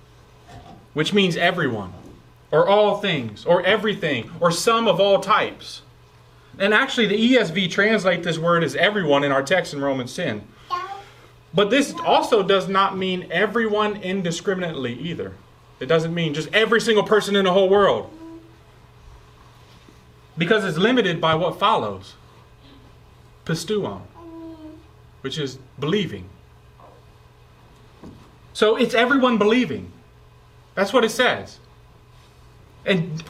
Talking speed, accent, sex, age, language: 120 wpm, American, male, 30-49, English